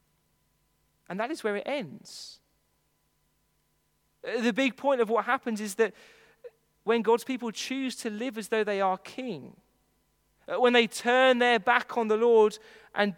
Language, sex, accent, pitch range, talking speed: English, male, British, 175-235 Hz, 155 wpm